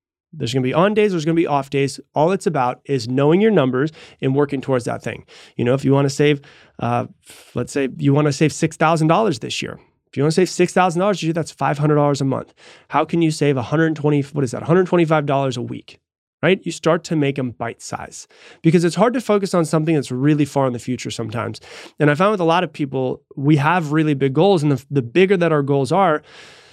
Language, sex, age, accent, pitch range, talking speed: English, male, 30-49, American, 130-165 Hz, 265 wpm